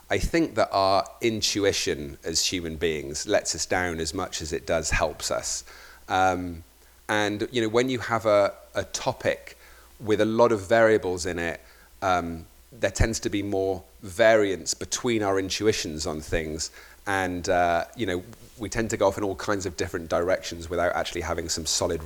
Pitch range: 90-110 Hz